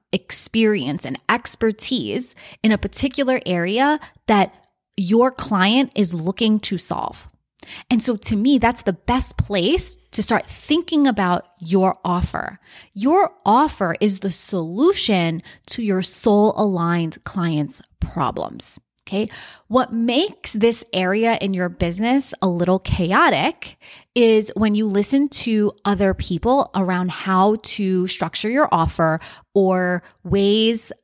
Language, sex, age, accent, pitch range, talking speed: English, female, 20-39, American, 180-240 Hz, 125 wpm